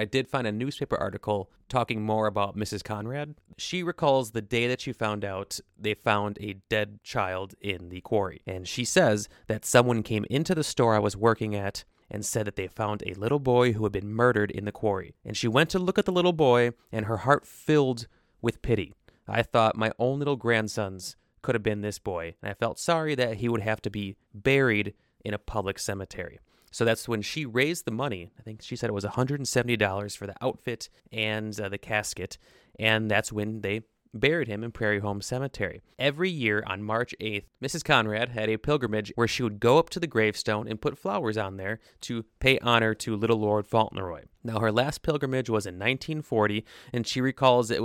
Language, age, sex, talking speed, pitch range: English, 30-49, male, 210 wpm, 105-125 Hz